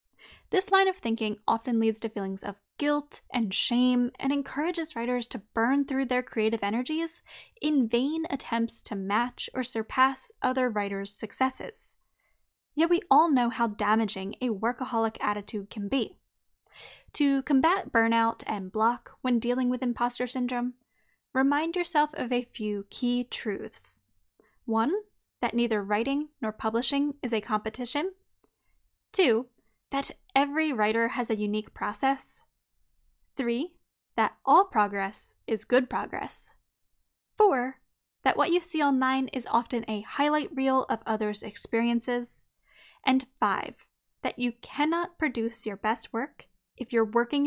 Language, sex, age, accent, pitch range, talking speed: English, female, 10-29, American, 220-280 Hz, 140 wpm